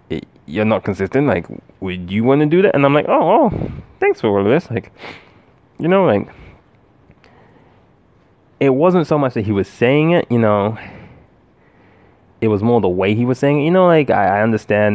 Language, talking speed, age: English, 200 wpm, 20-39